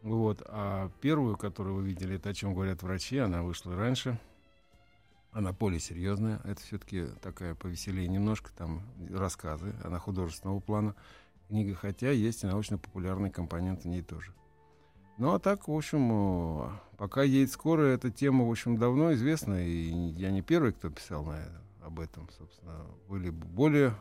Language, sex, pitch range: Russian, male, 90-115 Hz